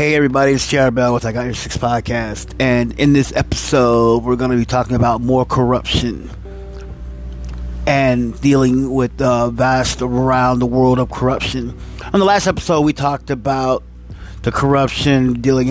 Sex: male